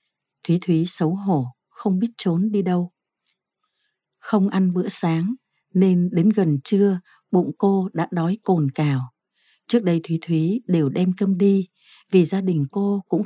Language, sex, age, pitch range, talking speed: Vietnamese, female, 60-79, 160-200 Hz, 165 wpm